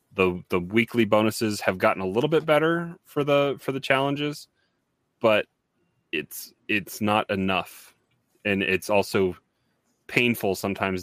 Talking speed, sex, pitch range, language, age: 135 wpm, male, 95-115 Hz, English, 30-49